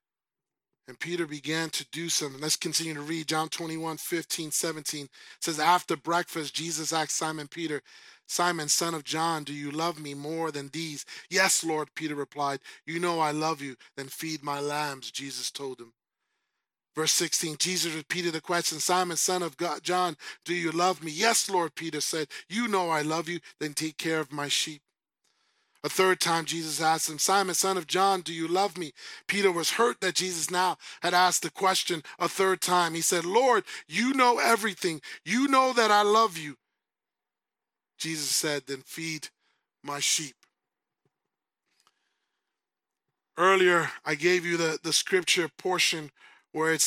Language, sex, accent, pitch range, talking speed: English, male, American, 155-180 Hz, 170 wpm